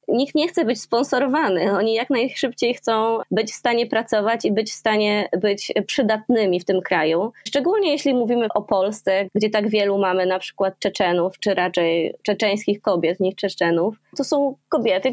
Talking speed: 170 wpm